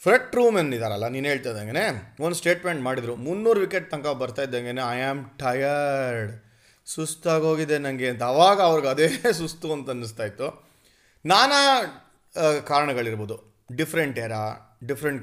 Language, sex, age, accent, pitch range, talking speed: Kannada, male, 30-49, native, 130-185 Hz, 125 wpm